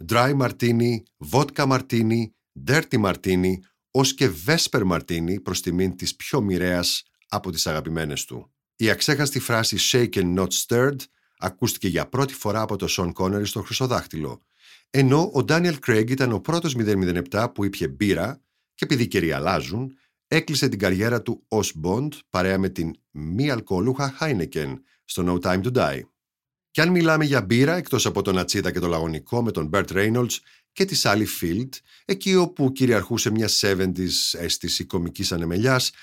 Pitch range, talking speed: 90-130 Hz, 155 wpm